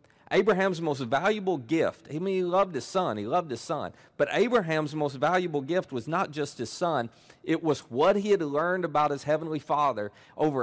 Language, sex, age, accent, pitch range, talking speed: English, male, 40-59, American, 120-170 Hz, 205 wpm